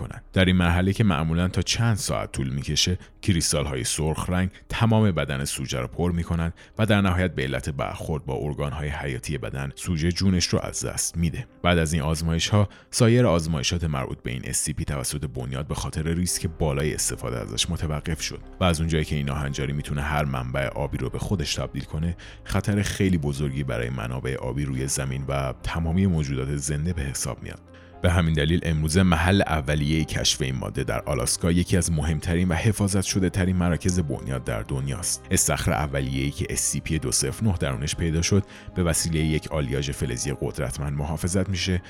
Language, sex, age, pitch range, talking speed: Persian, male, 30-49, 75-95 Hz, 180 wpm